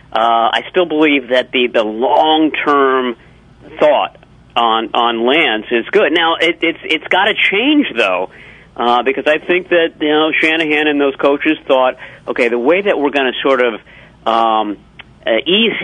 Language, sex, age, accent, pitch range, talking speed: English, male, 50-69, American, 115-145 Hz, 175 wpm